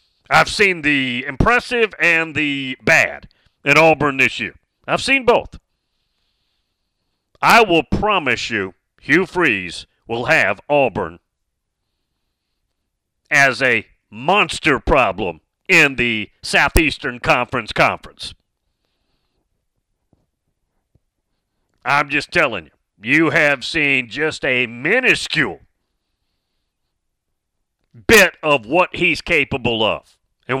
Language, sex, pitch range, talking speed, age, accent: English, male, 120-165 Hz, 95 wpm, 40-59, American